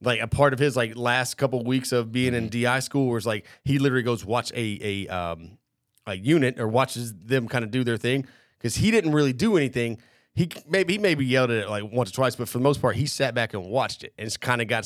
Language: English